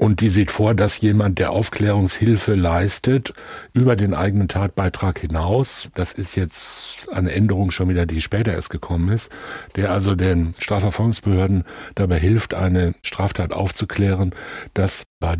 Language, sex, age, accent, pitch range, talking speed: German, male, 60-79, German, 90-105 Hz, 145 wpm